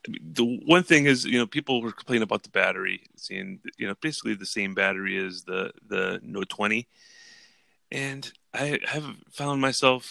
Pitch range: 105-125 Hz